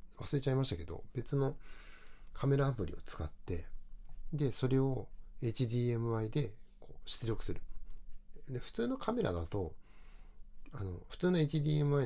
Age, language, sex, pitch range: 60-79, Japanese, male, 85-140 Hz